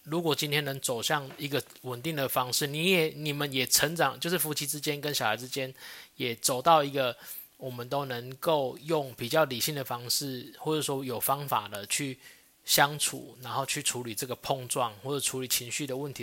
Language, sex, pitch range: Chinese, male, 125-150 Hz